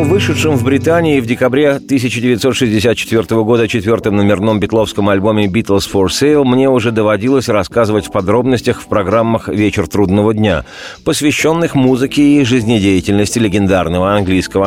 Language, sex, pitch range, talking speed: Russian, male, 100-125 Hz, 125 wpm